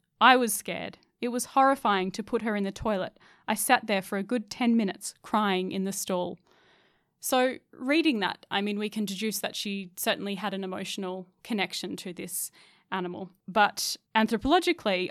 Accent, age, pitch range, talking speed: Australian, 10-29, 185-210 Hz, 175 wpm